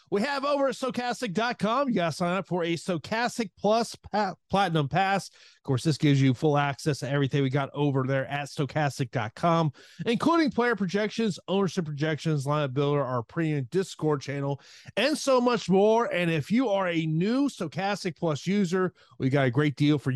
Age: 30-49